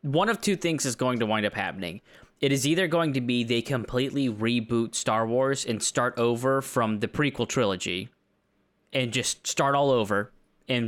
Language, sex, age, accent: English, male, 20-39, American